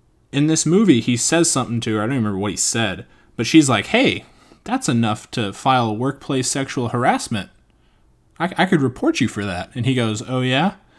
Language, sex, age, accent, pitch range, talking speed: English, male, 20-39, American, 105-145 Hz, 210 wpm